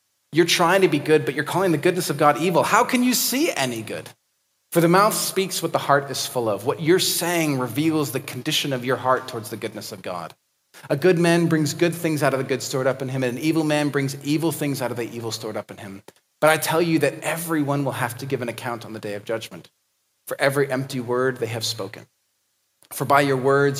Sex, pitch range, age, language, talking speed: male, 120-155 Hz, 30-49, English, 250 wpm